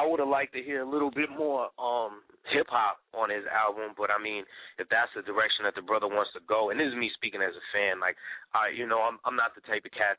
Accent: American